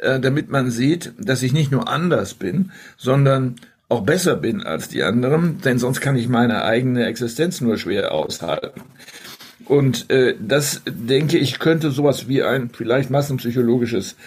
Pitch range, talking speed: 120-145 Hz, 155 wpm